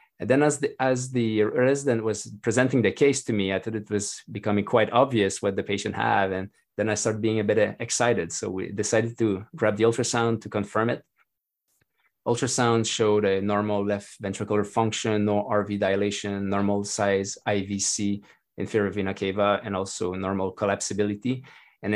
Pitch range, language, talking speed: 100-115 Hz, English, 170 wpm